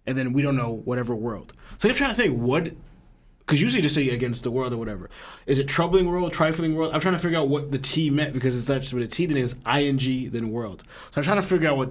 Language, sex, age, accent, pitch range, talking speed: English, male, 20-39, American, 120-140 Hz, 280 wpm